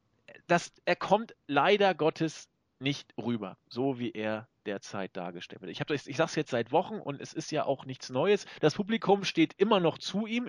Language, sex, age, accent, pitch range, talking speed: German, male, 40-59, German, 125-170 Hz, 185 wpm